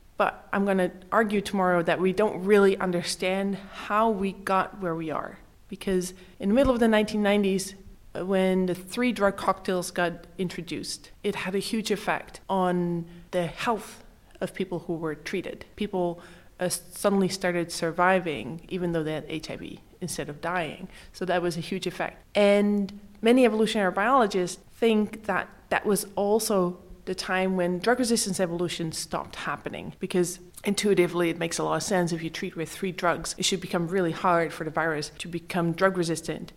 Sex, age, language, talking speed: female, 20-39, English, 175 wpm